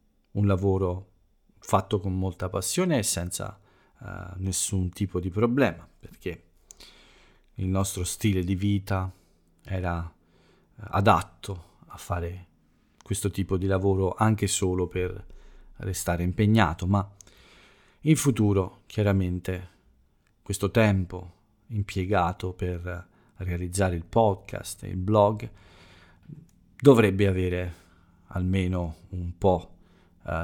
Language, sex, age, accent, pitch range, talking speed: Italian, male, 40-59, native, 90-105 Hz, 100 wpm